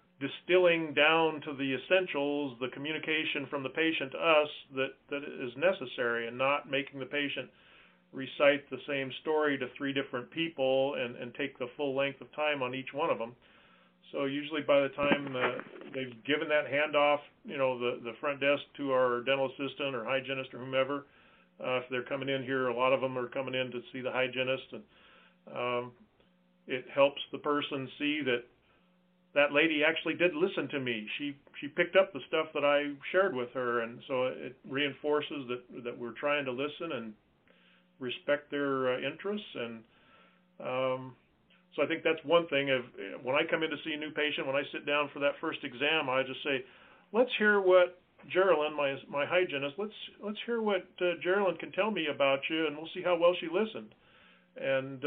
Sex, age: male, 40-59